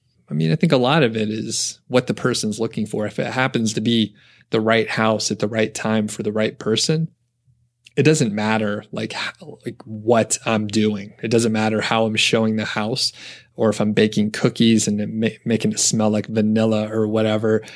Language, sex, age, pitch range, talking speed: English, male, 30-49, 105-120 Hz, 205 wpm